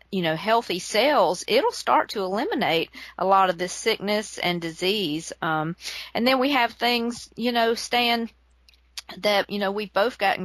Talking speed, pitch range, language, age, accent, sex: 170 wpm, 170-215 Hz, English, 40-59, American, female